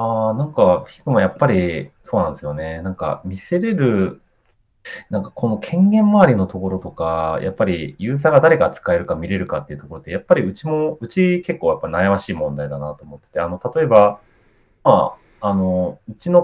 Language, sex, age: Japanese, male, 30-49